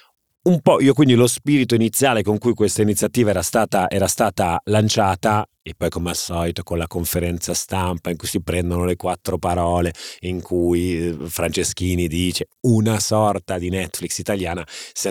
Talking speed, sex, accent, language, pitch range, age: 165 wpm, male, native, Italian, 90-115 Hz, 30-49